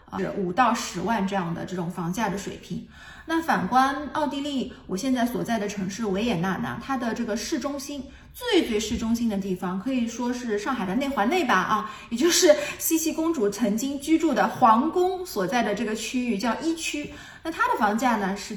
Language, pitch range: Chinese, 195-270 Hz